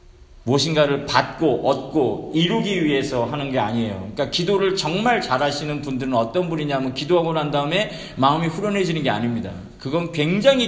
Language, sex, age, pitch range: Korean, male, 40-59, 125-180 Hz